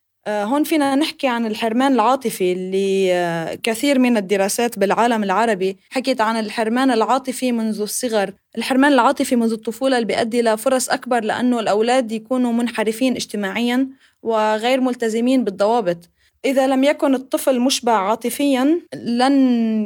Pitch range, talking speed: 210-255 Hz, 120 wpm